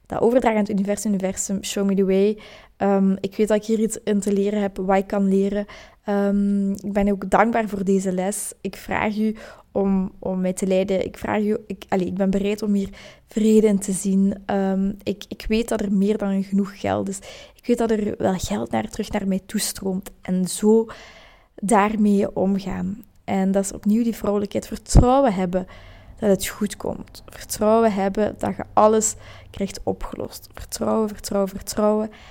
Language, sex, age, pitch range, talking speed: Dutch, female, 20-39, 195-220 Hz, 190 wpm